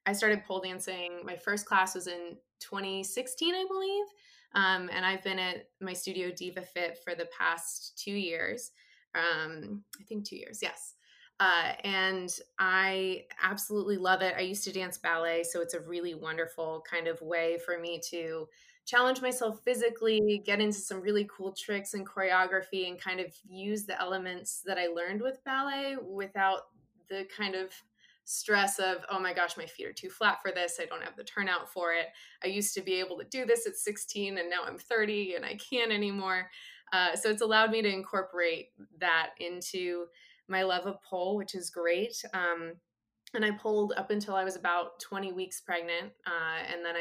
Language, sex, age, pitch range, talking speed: English, female, 20-39, 175-210 Hz, 190 wpm